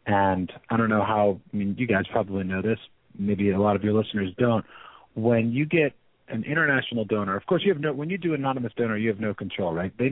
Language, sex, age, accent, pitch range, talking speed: English, male, 40-59, American, 105-130 Hz, 245 wpm